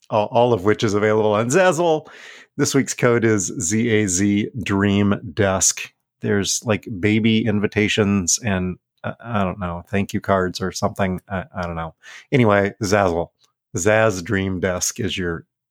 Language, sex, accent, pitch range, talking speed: English, male, American, 105-160 Hz, 140 wpm